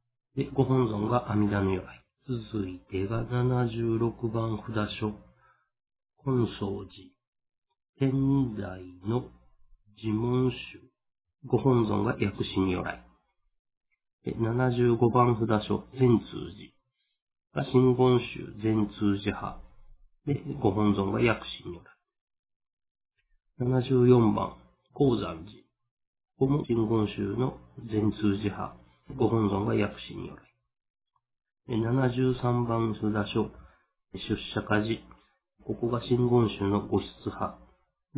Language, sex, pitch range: Japanese, male, 100-125 Hz